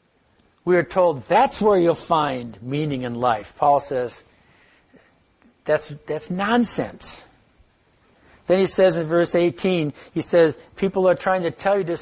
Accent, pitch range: American, 140-200 Hz